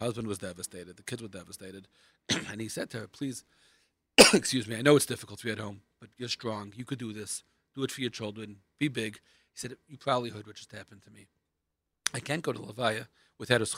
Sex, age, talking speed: male, 40-59, 230 wpm